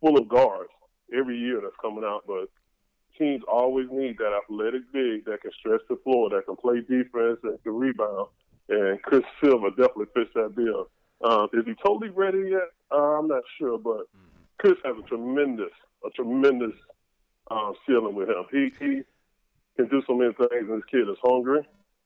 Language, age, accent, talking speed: English, 20-39, American, 180 wpm